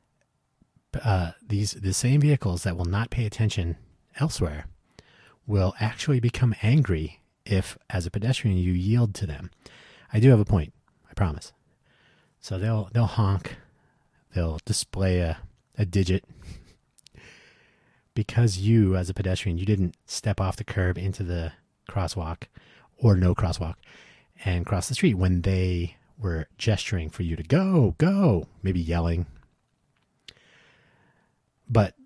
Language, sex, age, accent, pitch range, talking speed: English, male, 30-49, American, 90-115 Hz, 135 wpm